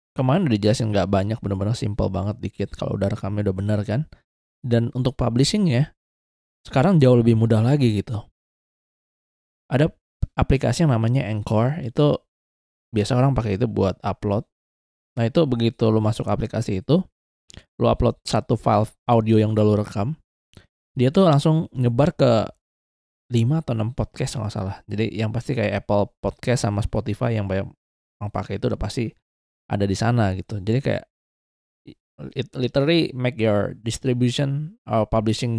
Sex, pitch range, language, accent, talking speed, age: male, 95-125 Hz, Indonesian, native, 150 wpm, 20-39